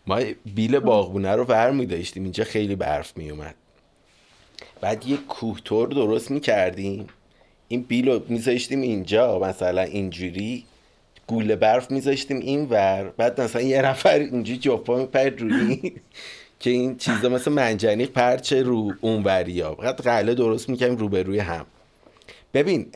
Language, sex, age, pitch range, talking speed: Persian, male, 30-49, 105-135 Hz, 155 wpm